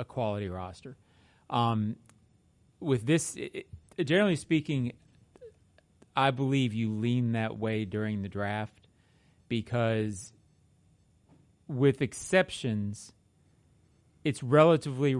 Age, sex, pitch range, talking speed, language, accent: 40-59, male, 105-135 Hz, 90 wpm, English, American